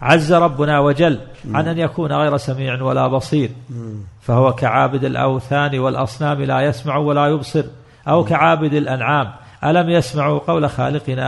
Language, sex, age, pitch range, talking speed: Arabic, male, 50-69, 130-155 Hz, 135 wpm